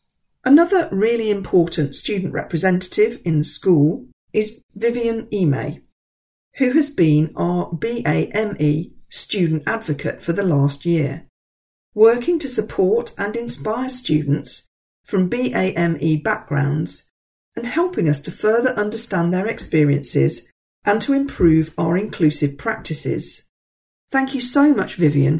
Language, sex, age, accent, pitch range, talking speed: English, female, 40-59, British, 150-225 Hz, 120 wpm